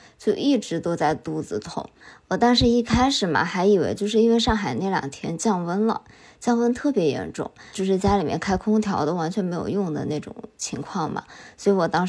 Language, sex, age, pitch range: Chinese, male, 20-39, 165-220 Hz